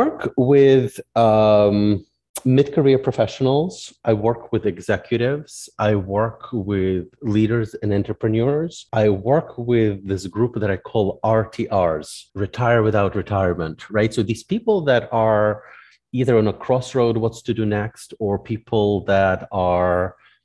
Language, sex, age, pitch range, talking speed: English, male, 30-49, 95-120 Hz, 135 wpm